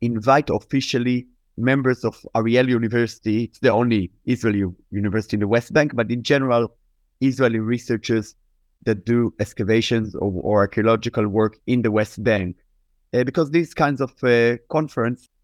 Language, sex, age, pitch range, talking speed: English, male, 30-49, 105-130 Hz, 150 wpm